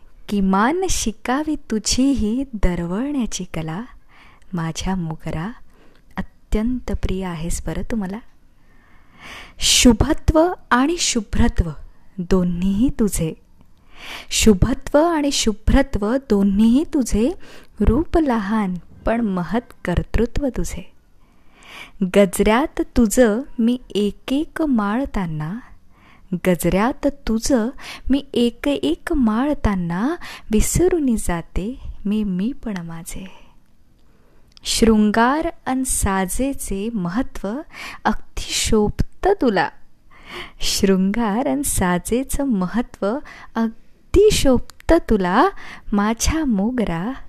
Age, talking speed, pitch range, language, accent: 20-39, 80 wpm, 195-265 Hz, Marathi, native